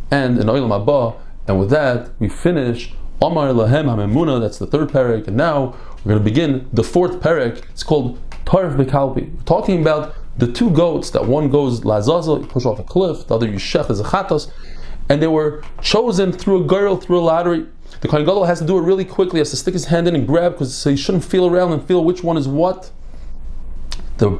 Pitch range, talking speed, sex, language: 125-170 Hz, 205 wpm, male, English